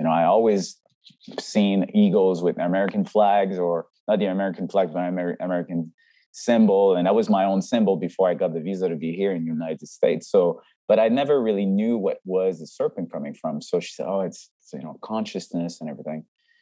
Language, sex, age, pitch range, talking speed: English, male, 20-39, 85-105 Hz, 210 wpm